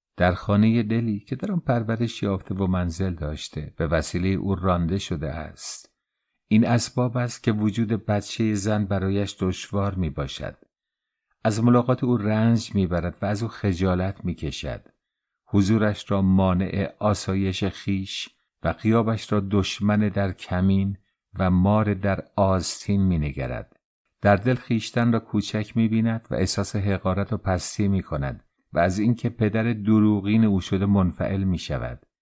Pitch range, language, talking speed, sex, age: 90-105 Hz, English, 150 wpm, male, 50-69